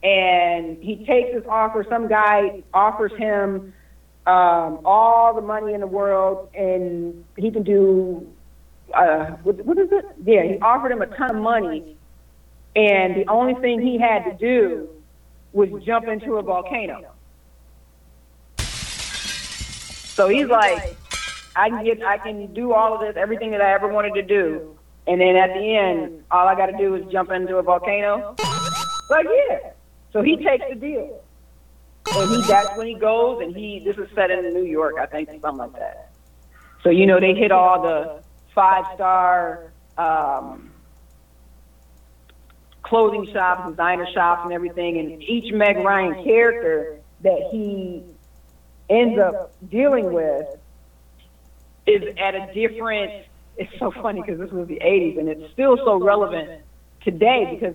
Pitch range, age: 160-215 Hz, 40-59